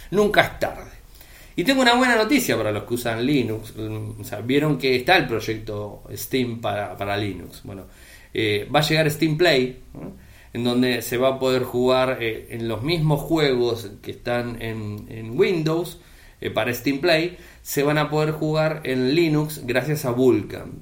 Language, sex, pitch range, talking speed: Spanish, male, 110-140 Hz, 180 wpm